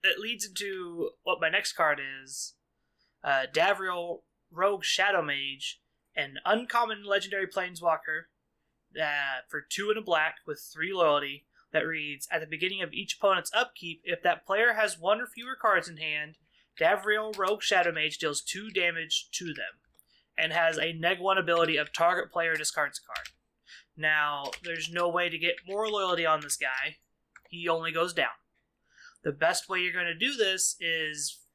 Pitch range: 155-195 Hz